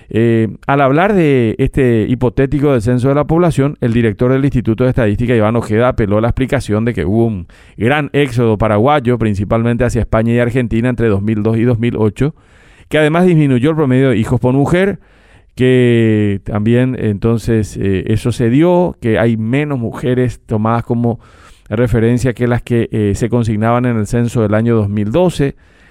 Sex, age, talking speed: male, 40-59, 170 wpm